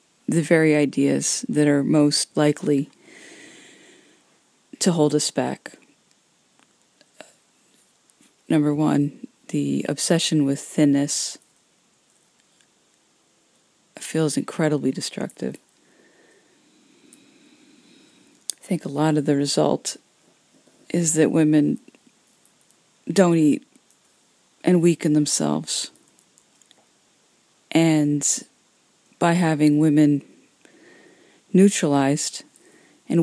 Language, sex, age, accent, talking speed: English, female, 30-49, American, 75 wpm